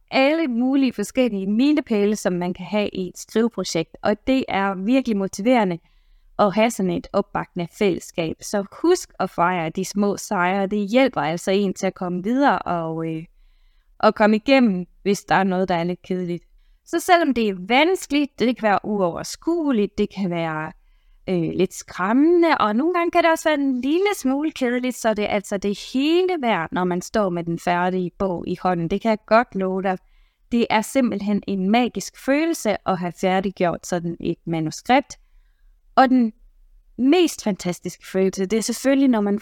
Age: 20-39